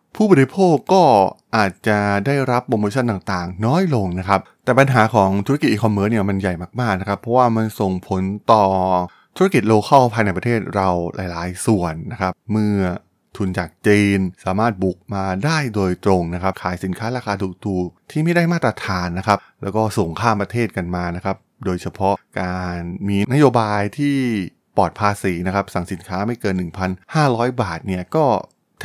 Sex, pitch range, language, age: male, 95-120 Hz, Thai, 20-39